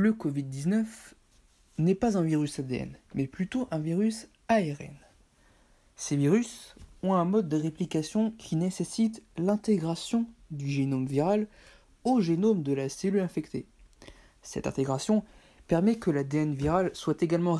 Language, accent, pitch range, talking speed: French, French, 140-200 Hz, 135 wpm